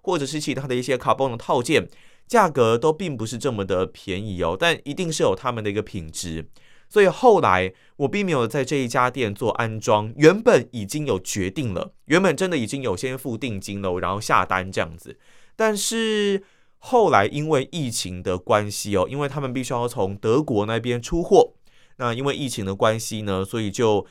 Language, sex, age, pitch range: Chinese, male, 20-39, 100-145 Hz